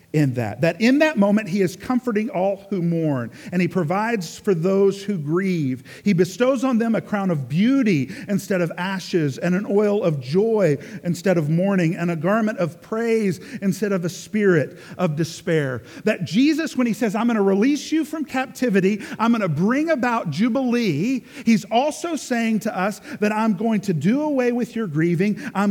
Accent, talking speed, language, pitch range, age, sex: American, 190 wpm, English, 185-240 Hz, 50-69, male